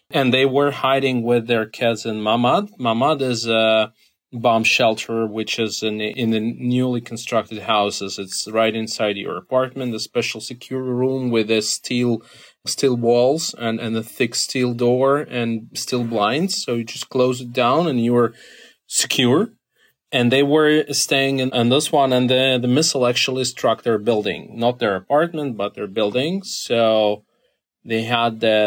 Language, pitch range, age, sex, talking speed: English, 110-130 Hz, 30-49, male, 170 wpm